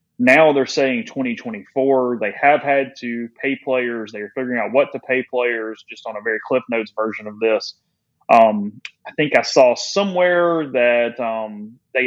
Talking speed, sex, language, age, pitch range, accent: 175 wpm, male, English, 30-49, 115-140 Hz, American